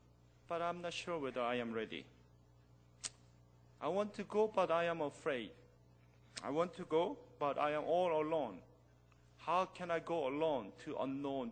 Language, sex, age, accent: Korean, male, 40-59, native